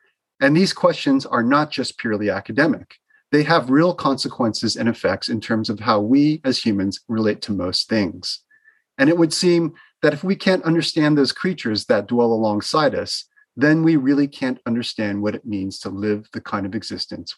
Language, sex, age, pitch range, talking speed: English, male, 40-59, 110-160 Hz, 185 wpm